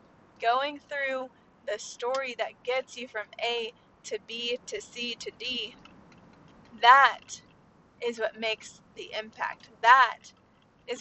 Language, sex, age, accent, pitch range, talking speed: English, female, 20-39, American, 220-260 Hz, 125 wpm